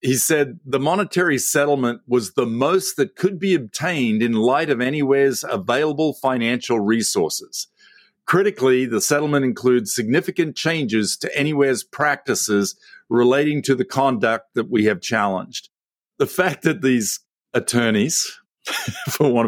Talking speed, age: 130 wpm, 50-69